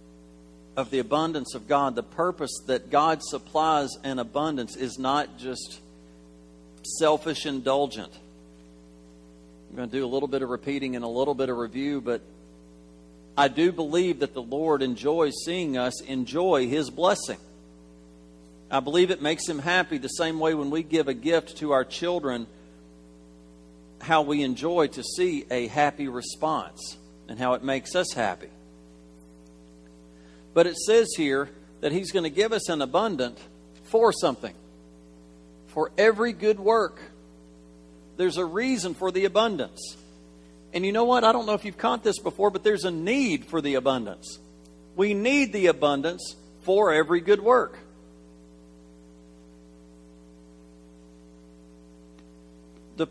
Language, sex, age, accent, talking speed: English, male, 50-69, American, 145 wpm